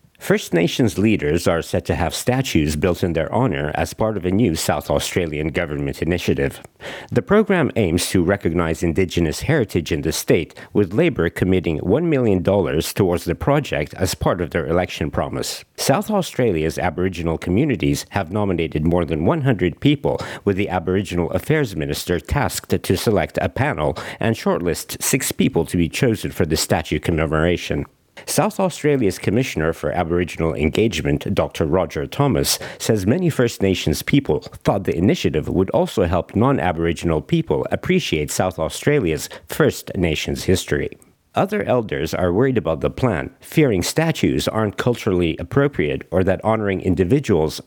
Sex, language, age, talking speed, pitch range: male, English, 60-79, 150 wpm, 80-110 Hz